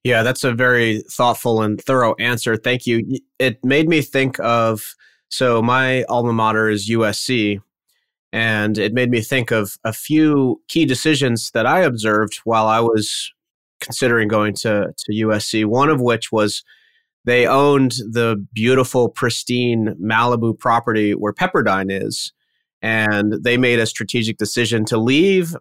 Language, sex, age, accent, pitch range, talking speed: English, male, 30-49, American, 110-130 Hz, 150 wpm